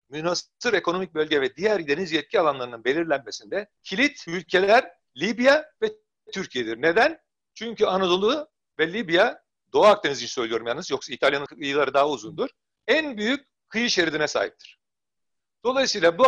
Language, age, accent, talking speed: Turkish, 60-79, native, 130 wpm